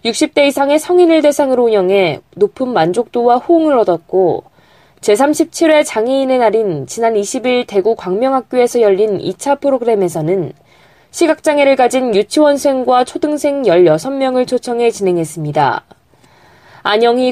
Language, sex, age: Korean, female, 20-39